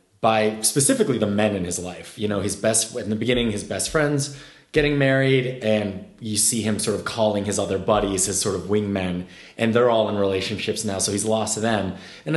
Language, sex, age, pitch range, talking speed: English, male, 30-49, 95-115 Hz, 220 wpm